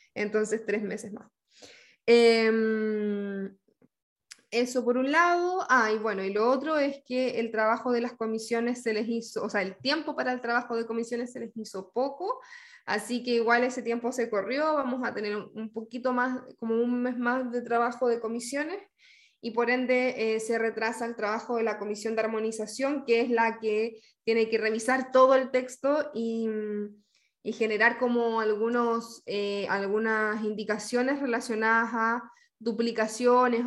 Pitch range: 220-255 Hz